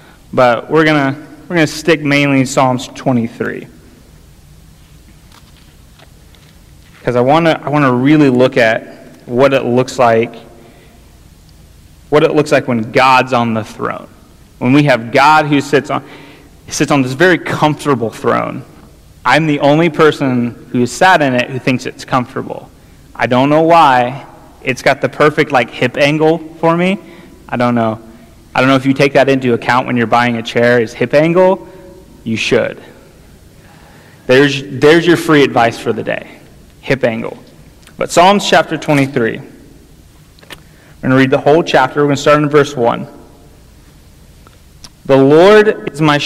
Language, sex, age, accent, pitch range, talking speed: English, male, 30-49, American, 120-155 Hz, 160 wpm